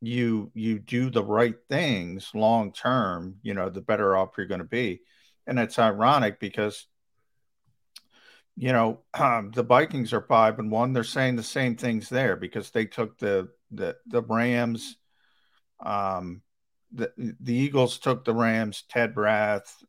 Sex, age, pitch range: male, 50-69, 100-120 Hz